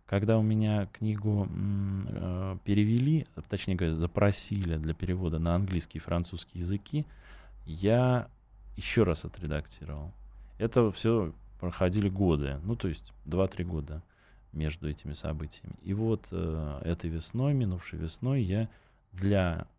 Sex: male